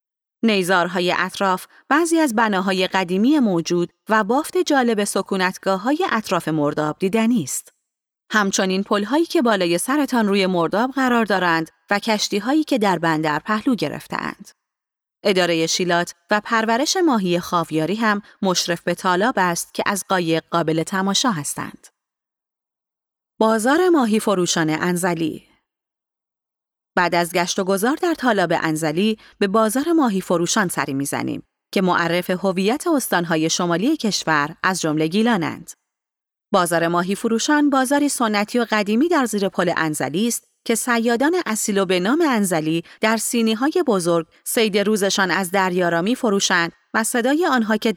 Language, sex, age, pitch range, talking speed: Persian, female, 30-49, 175-230 Hz, 135 wpm